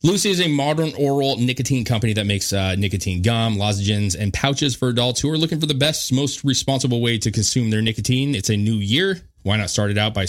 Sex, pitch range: male, 100-135 Hz